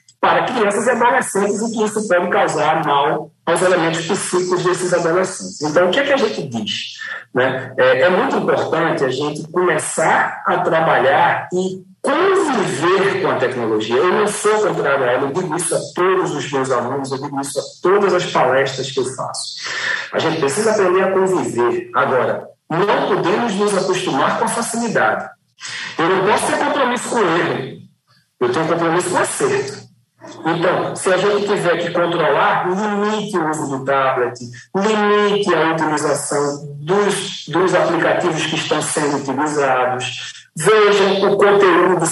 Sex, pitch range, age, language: male, 155-205 Hz, 50-69, English